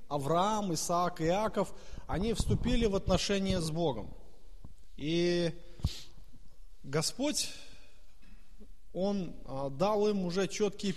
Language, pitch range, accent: Russian, 165-215 Hz, native